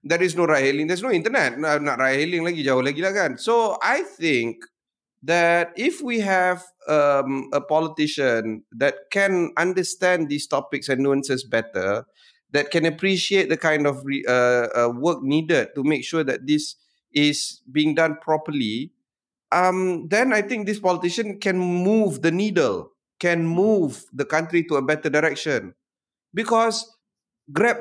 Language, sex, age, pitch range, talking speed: Malay, male, 30-49, 140-185 Hz, 160 wpm